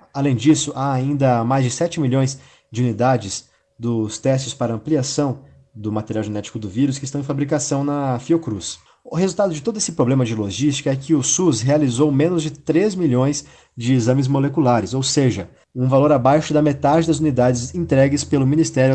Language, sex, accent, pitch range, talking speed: Portuguese, male, Brazilian, 115-145 Hz, 180 wpm